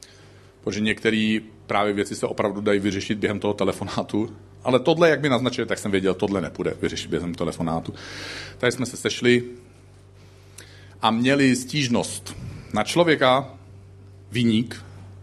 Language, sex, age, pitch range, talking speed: Czech, male, 40-59, 95-120 Hz, 135 wpm